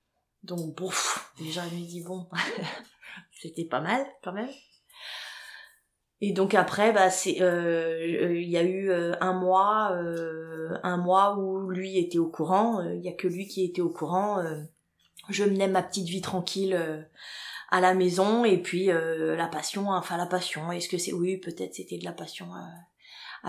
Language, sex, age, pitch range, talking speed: French, female, 20-39, 165-190 Hz, 185 wpm